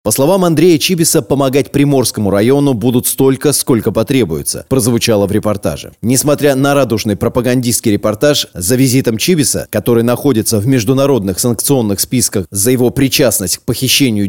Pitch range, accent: 110-140 Hz, native